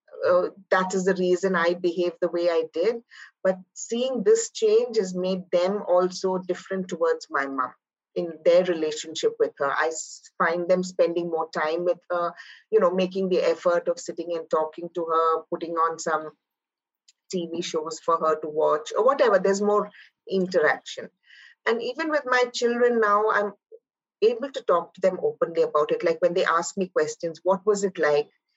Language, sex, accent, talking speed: English, female, Indian, 180 wpm